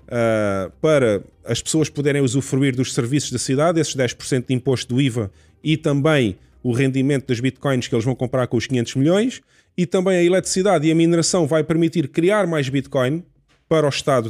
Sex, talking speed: male, 185 wpm